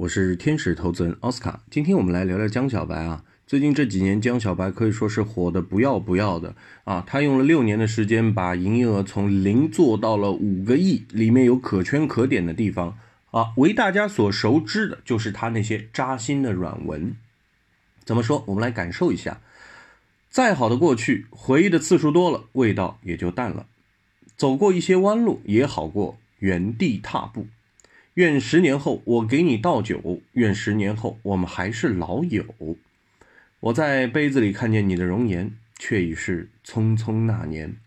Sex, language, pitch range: male, Chinese, 100-150 Hz